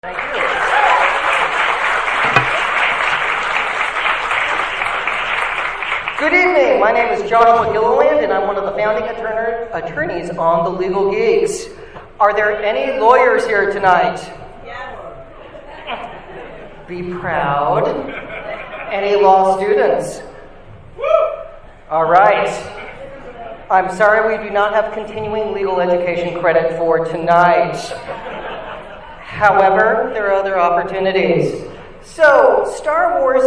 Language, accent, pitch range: English, American, 170-230 Hz